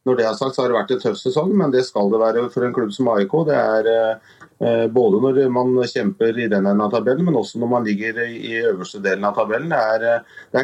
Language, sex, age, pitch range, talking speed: Swedish, male, 30-49, 110-130 Hz, 255 wpm